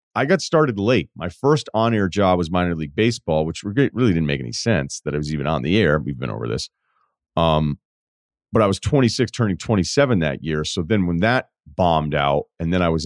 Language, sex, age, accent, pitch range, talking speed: English, male, 40-59, American, 75-100 Hz, 220 wpm